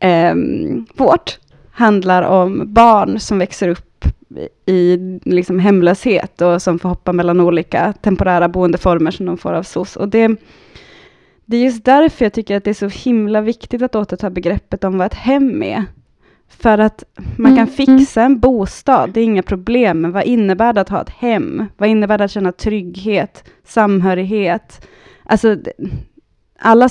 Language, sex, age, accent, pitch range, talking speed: Swedish, female, 20-39, Norwegian, 185-230 Hz, 165 wpm